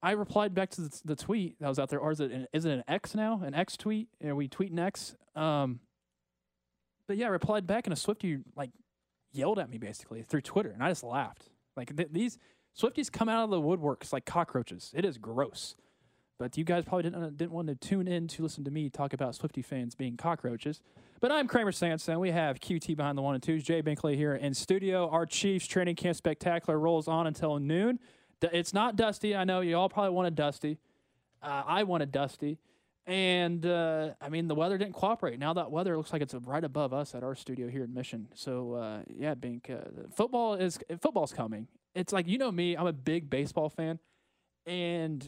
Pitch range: 140-185 Hz